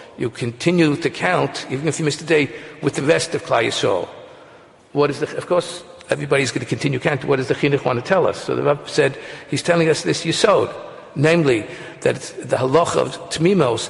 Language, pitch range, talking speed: English, 130-165 Hz, 205 wpm